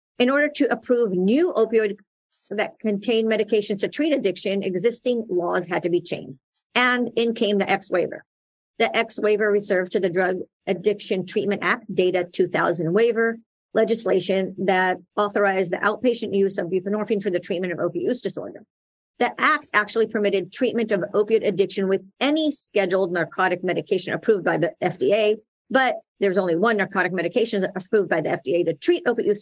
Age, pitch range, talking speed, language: 50-69, 180-225 Hz, 165 wpm, English